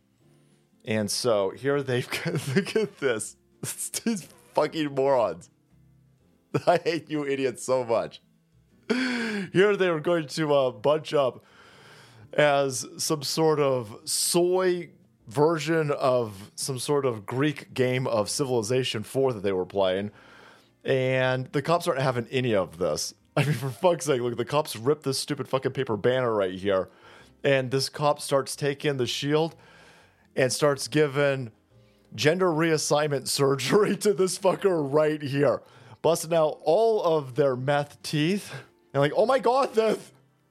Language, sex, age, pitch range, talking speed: English, male, 30-49, 130-185 Hz, 145 wpm